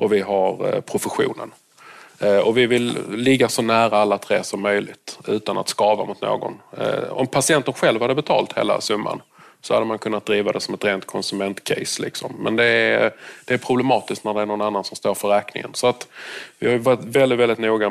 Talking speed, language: 200 wpm, English